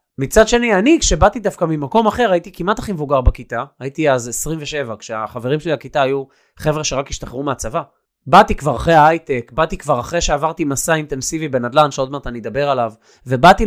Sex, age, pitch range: male, 20-39, 135-190 Hz